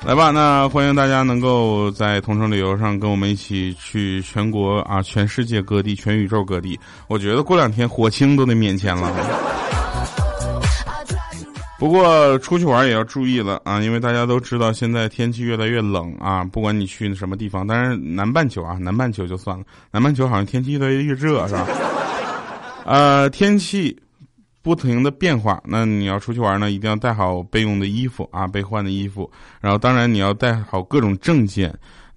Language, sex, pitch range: Chinese, male, 100-145 Hz